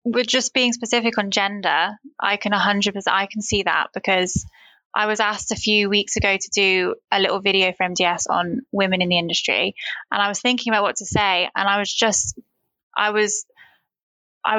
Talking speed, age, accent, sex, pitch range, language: 200 wpm, 20-39, British, female, 185-215 Hz, English